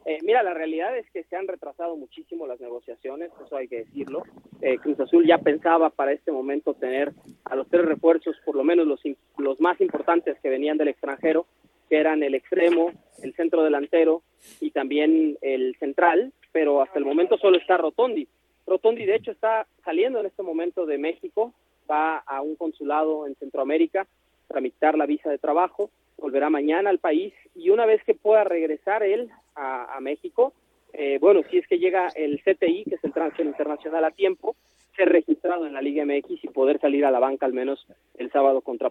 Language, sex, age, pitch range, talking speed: Spanish, male, 30-49, 145-190 Hz, 195 wpm